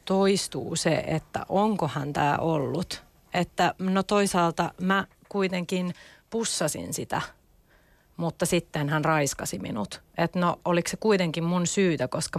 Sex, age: female, 30-49